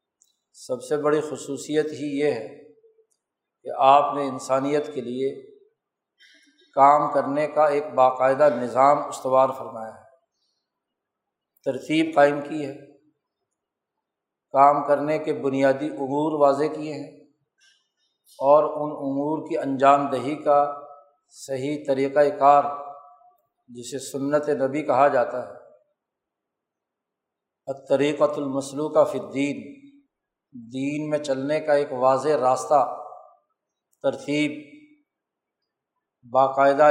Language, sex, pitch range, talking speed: Urdu, male, 135-155 Hz, 100 wpm